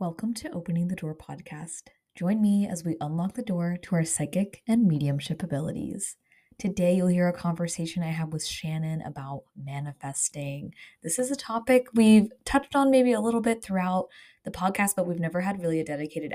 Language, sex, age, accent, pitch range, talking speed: English, female, 20-39, American, 160-185 Hz, 185 wpm